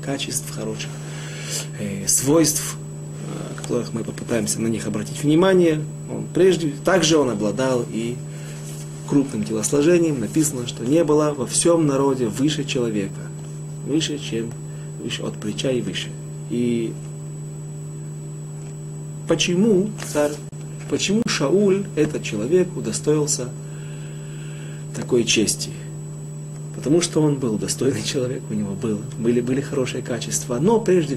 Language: Russian